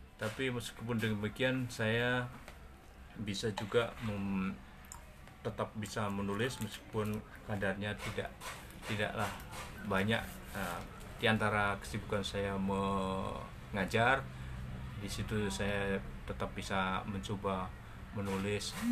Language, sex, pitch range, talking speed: Indonesian, male, 95-115 Hz, 90 wpm